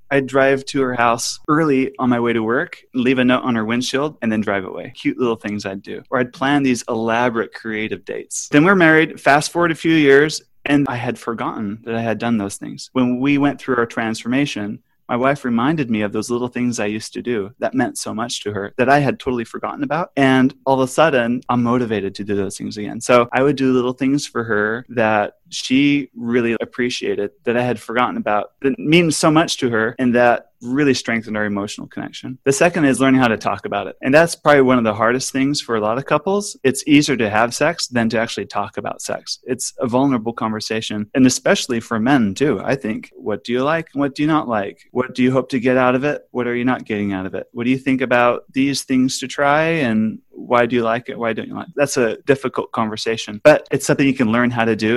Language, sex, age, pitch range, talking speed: English, male, 30-49, 115-140 Hz, 245 wpm